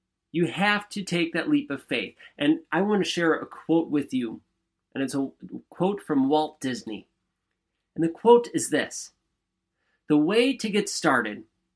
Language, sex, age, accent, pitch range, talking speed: English, male, 30-49, American, 140-205 Hz, 175 wpm